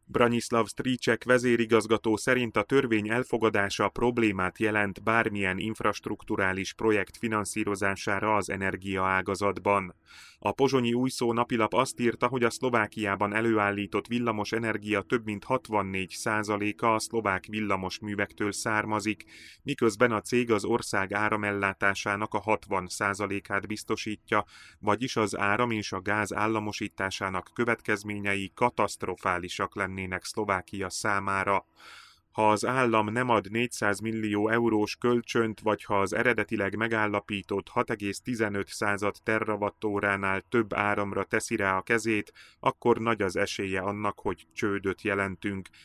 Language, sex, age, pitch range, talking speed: Hungarian, male, 30-49, 100-115 Hz, 115 wpm